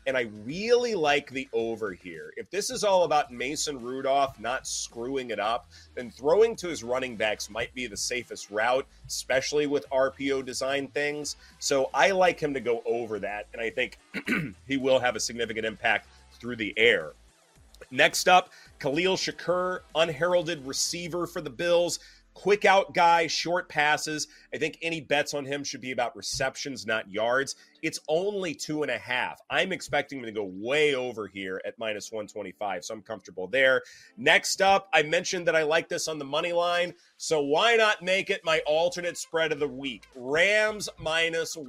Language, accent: English, American